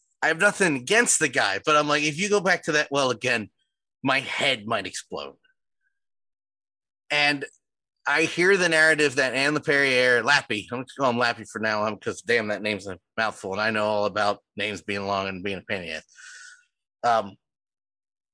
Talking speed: 195 wpm